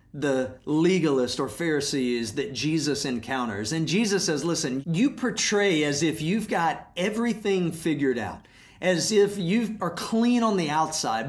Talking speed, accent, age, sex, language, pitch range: 150 wpm, American, 40-59, male, English, 145-195 Hz